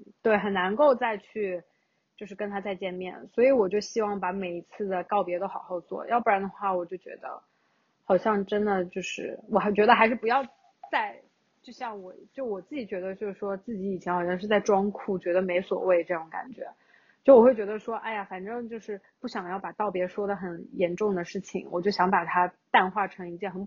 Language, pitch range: Chinese, 185-220 Hz